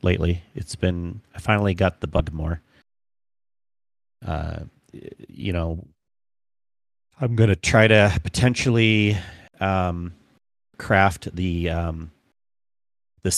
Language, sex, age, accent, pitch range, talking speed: English, male, 30-49, American, 85-105 Hz, 100 wpm